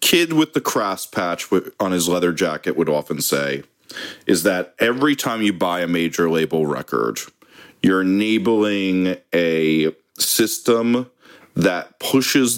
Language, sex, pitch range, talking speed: English, male, 80-120 Hz, 135 wpm